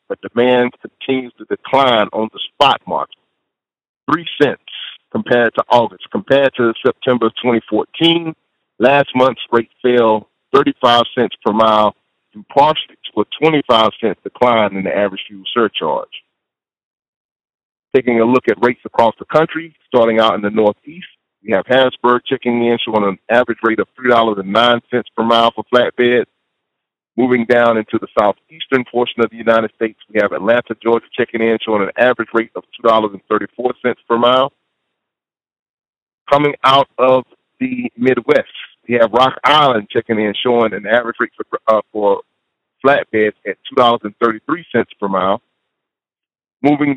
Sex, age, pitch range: male, 50-69, 110-125 Hz